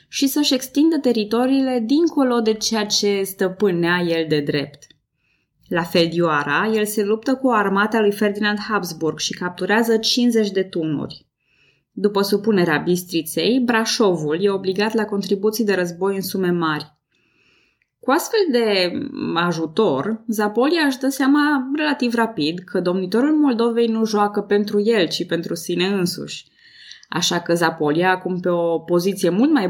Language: Romanian